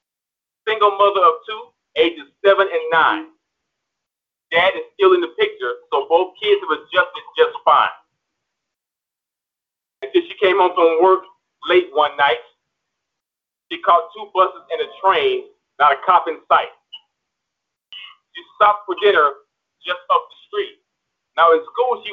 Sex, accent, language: male, American, English